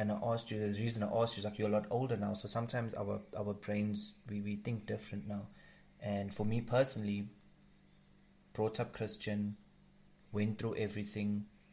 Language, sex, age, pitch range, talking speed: English, male, 30-49, 105-120 Hz, 185 wpm